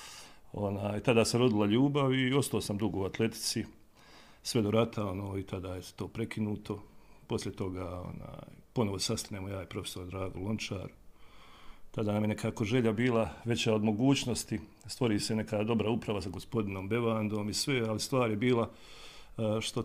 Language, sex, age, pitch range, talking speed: Croatian, male, 40-59, 100-115 Hz, 155 wpm